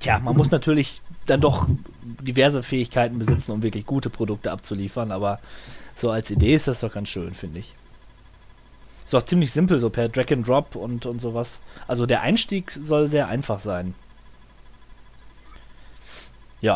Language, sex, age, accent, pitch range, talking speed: German, male, 20-39, German, 105-140 Hz, 160 wpm